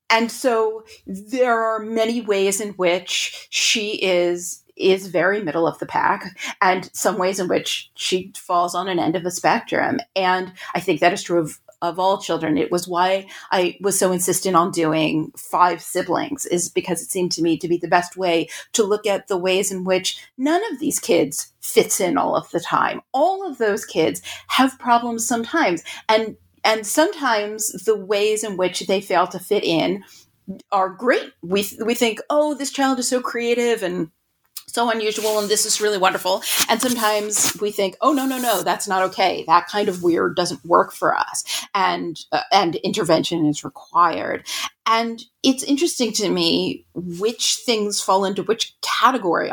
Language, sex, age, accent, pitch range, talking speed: English, female, 40-59, American, 185-235 Hz, 185 wpm